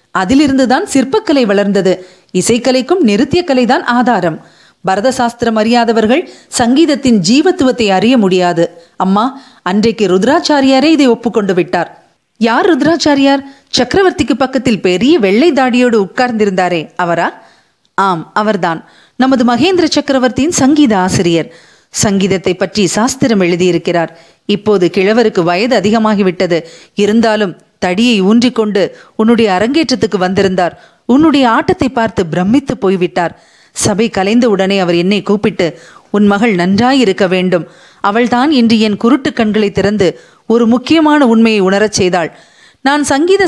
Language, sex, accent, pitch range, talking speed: Tamil, female, native, 195-255 Hz, 105 wpm